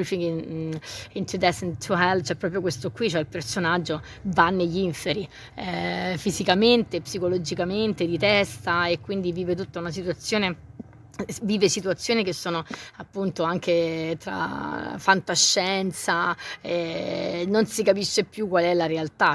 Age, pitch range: 20-39, 170-195 Hz